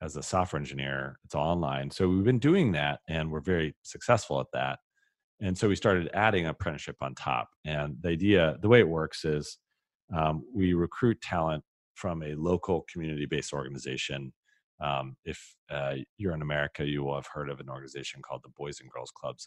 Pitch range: 70-85 Hz